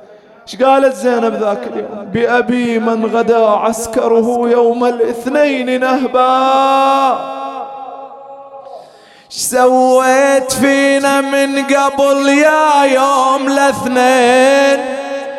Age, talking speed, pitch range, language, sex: 20-39, 70 wpm, 260-285 Hz, English, male